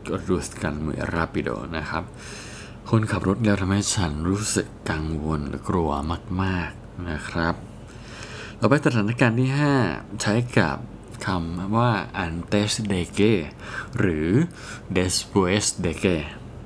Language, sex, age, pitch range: Spanish, male, 20-39, 90-115 Hz